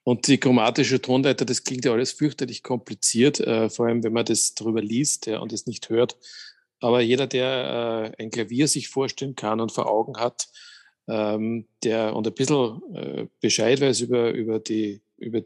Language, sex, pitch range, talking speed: German, male, 110-130 Hz, 185 wpm